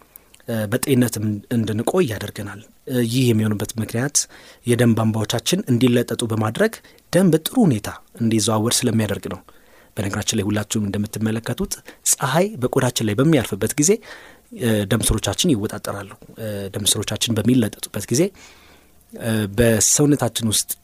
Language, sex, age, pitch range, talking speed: Amharic, male, 30-49, 105-135 Hz, 100 wpm